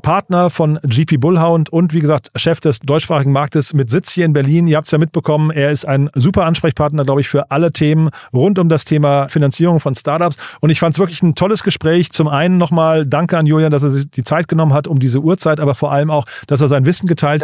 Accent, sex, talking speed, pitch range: German, male, 245 wpm, 140-170 Hz